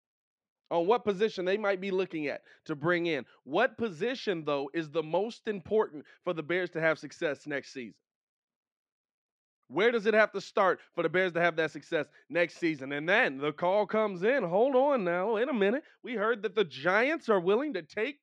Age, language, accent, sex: 20-39, English, American, male